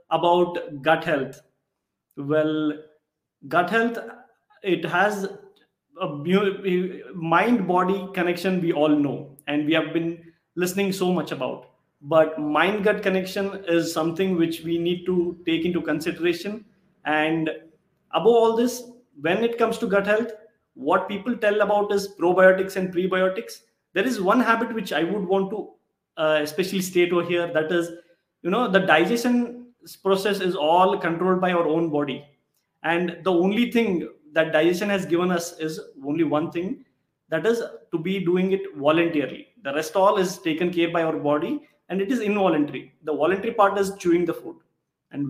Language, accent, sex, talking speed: English, Indian, male, 165 wpm